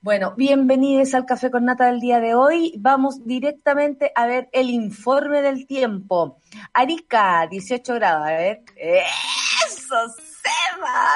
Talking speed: 135 wpm